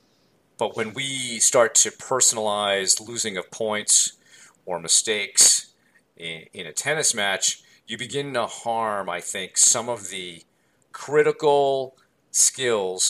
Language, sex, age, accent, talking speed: English, male, 40-59, American, 125 wpm